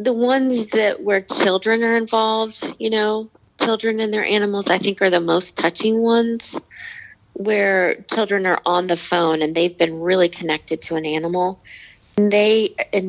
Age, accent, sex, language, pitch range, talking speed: 40-59, American, female, English, 165-200 Hz, 170 wpm